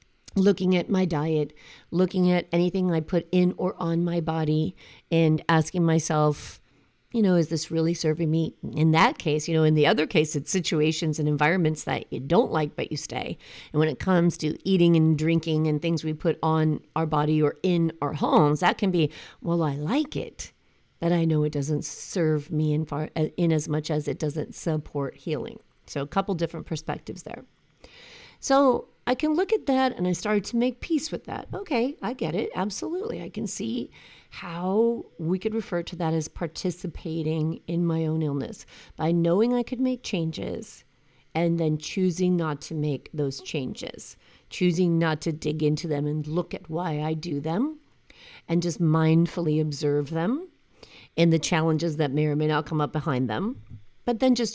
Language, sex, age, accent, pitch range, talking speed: English, female, 40-59, American, 155-180 Hz, 190 wpm